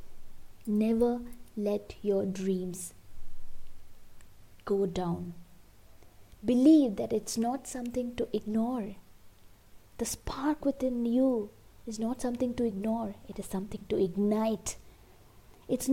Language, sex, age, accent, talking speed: English, female, 20-39, Indian, 105 wpm